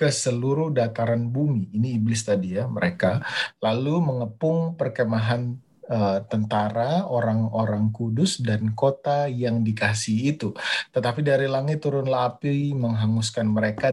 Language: Indonesian